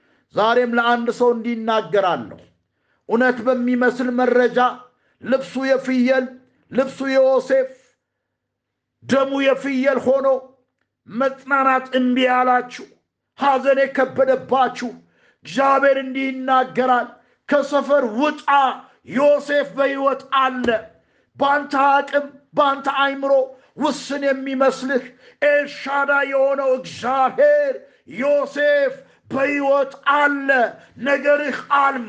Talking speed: 75 wpm